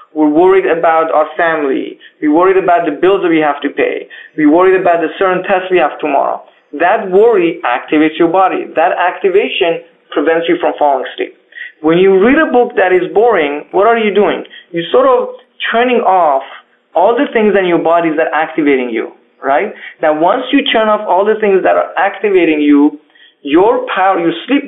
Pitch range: 165-250 Hz